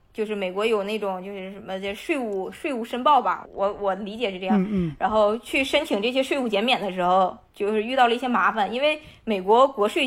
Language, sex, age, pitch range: Chinese, female, 20-39, 200-245 Hz